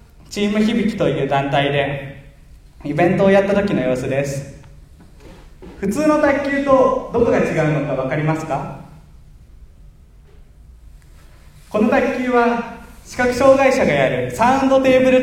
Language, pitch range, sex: Japanese, 140-225 Hz, male